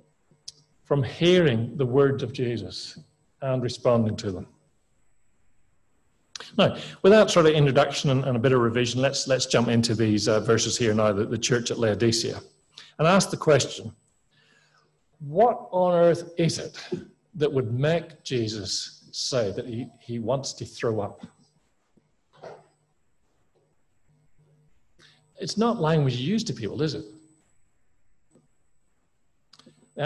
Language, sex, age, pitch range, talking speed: English, male, 40-59, 120-165 Hz, 130 wpm